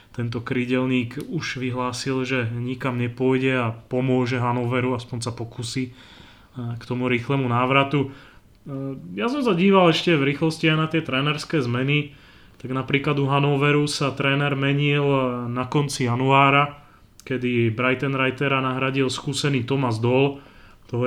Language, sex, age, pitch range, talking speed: Slovak, male, 30-49, 120-140 Hz, 130 wpm